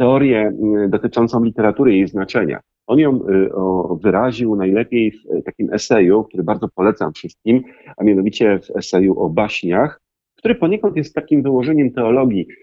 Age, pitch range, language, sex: 40-59, 105-130 Hz, Polish, male